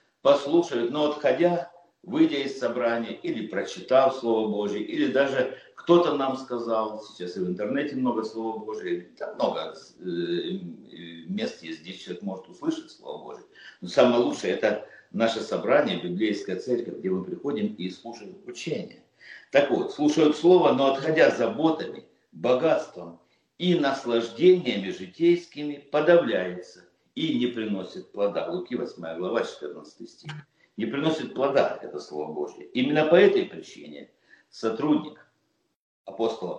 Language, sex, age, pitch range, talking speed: Russian, male, 60-79, 110-175 Hz, 135 wpm